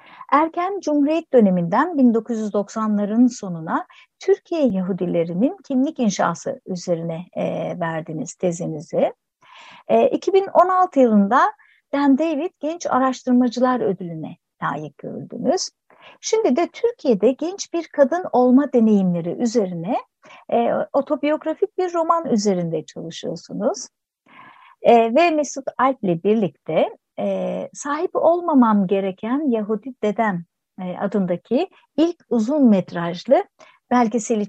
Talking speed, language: 85 wpm, Turkish